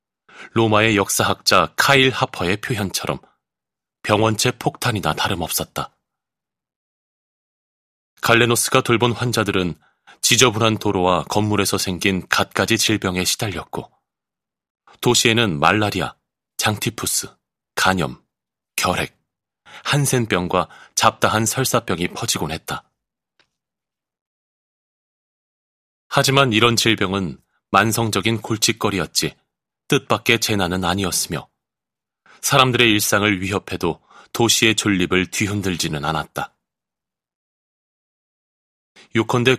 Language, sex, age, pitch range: Korean, male, 30-49, 95-120 Hz